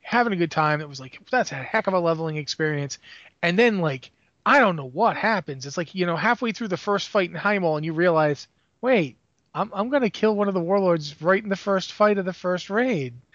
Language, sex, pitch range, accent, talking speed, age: English, male, 150-195 Hz, American, 250 wpm, 30-49